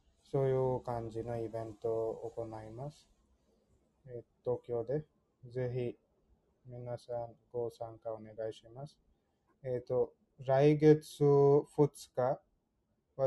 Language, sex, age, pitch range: Japanese, male, 20-39, 115-130 Hz